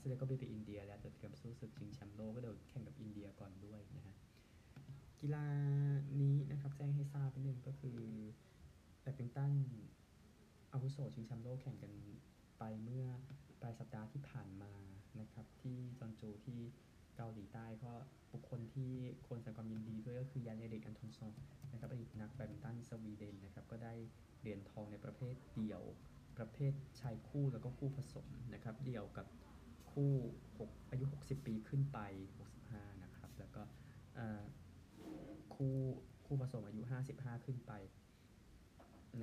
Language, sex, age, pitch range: Thai, male, 20-39, 110-135 Hz